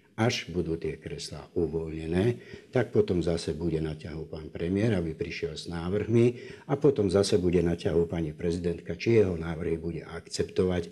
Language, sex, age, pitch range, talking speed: Slovak, male, 60-79, 80-90 Hz, 165 wpm